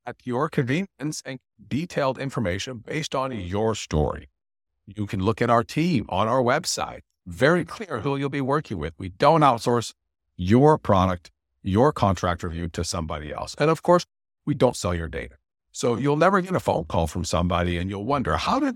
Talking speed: 190 wpm